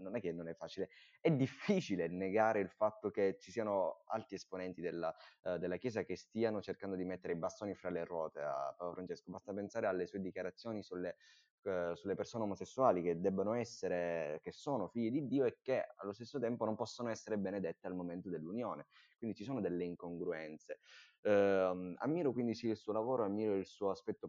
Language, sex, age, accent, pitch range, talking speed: Italian, male, 20-39, native, 85-110 Hz, 195 wpm